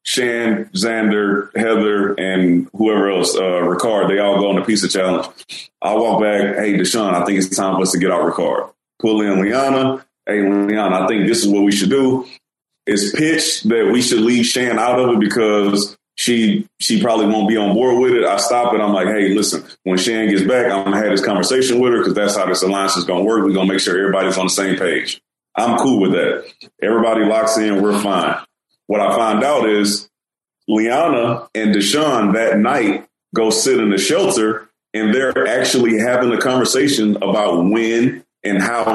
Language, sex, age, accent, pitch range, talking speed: English, male, 30-49, American, 100-115 Hz, 210 wpm